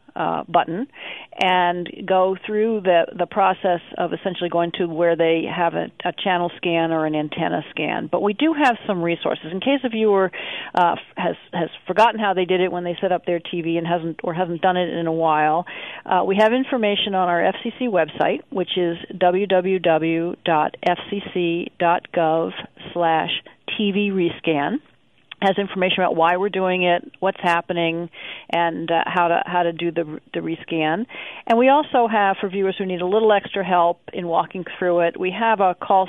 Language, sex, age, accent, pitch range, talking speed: English, female, 40-59, American, 170-195 Hz, 180 wpm